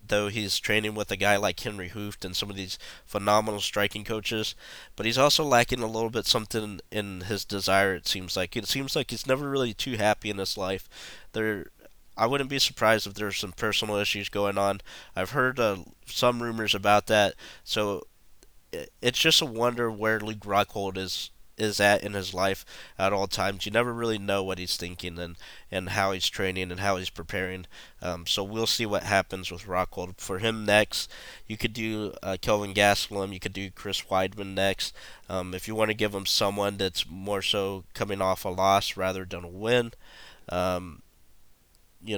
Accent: American